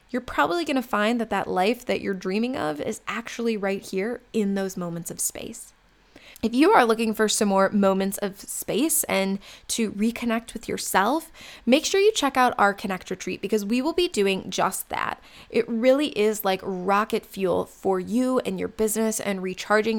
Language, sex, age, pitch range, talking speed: English, female, 20-39, 195-235 Hz, 190 wpm